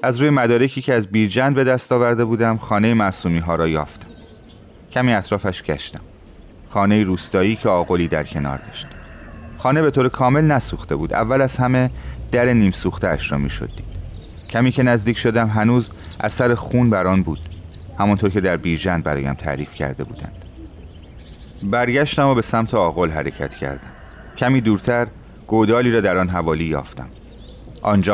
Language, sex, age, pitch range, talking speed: Persian, male, 30-49, 80-120 Hz, 155 wpm